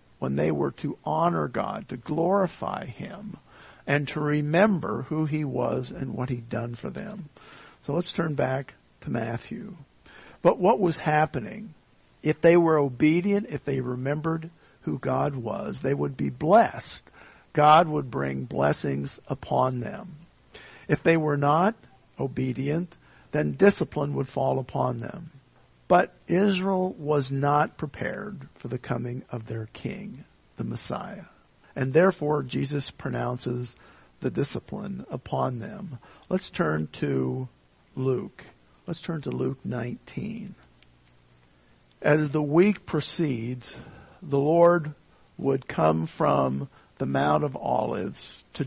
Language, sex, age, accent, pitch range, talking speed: English, male, 50-69, American, 120-165 Hz, 130 wpm